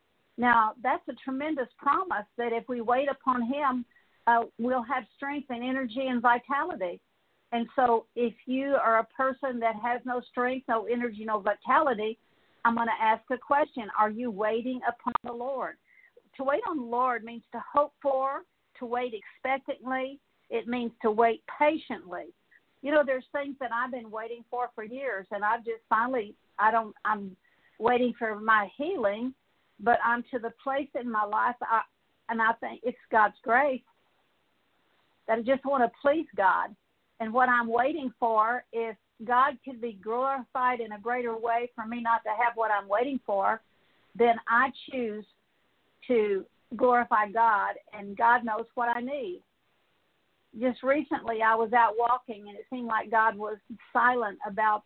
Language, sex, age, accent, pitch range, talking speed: English, female, 50-69, American, 225-260 Hz, 170 wpm